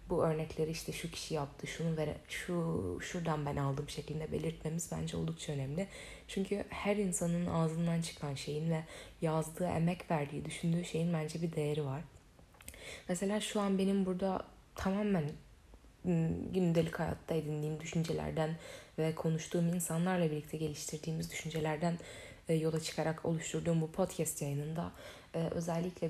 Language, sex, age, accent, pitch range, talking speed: Turkish, female, 10-29, native, 150-170 Hz, 130 wpm